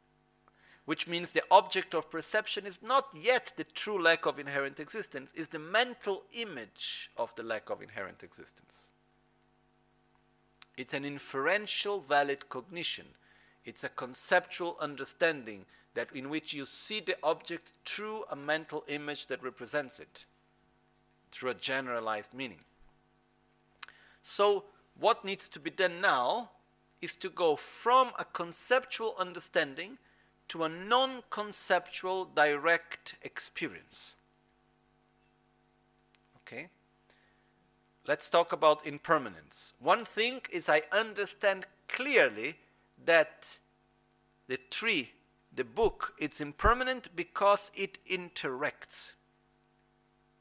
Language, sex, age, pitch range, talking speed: Italian, male, 50-69, 150-205 Hz, 110 wpm